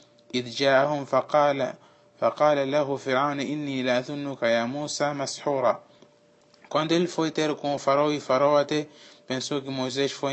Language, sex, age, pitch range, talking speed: Portuguese, male, 20-39, 135-155 Hz, 85 wpm